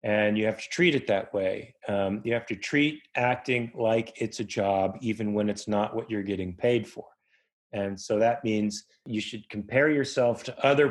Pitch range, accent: 105-120 Hz, American